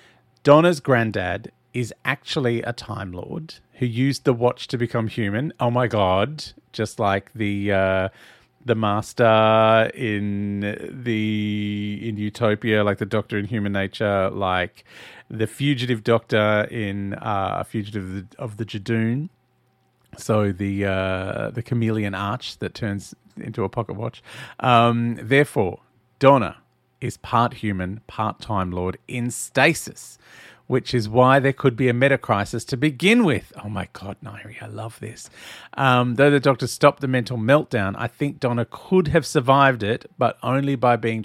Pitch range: 105-135 Hz